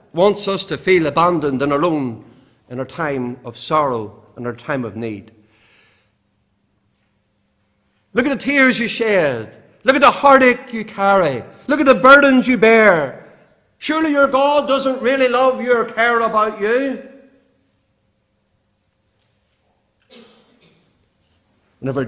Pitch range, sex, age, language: 135-205 Hz, male, 50-69, English